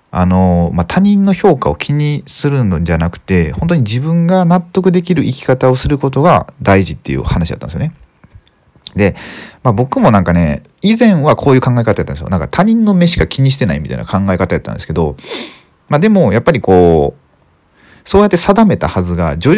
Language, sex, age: Japanese, male, 40-59